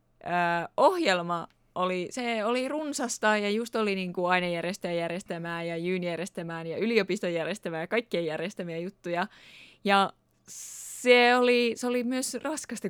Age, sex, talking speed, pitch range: 20-39, female, 130 wpm, 180-240 Hz